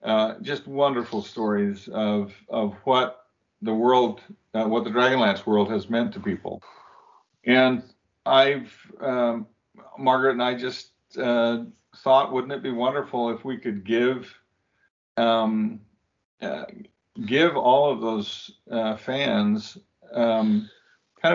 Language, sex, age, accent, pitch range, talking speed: English, male, 50-69, American, 110-135 Hz, 125 wpm